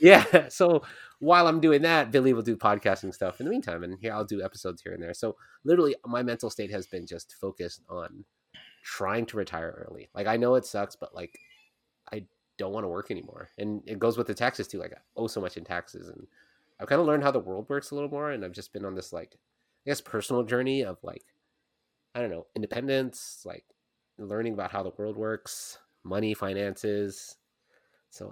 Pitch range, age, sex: 95-130 Hz, 30-49, male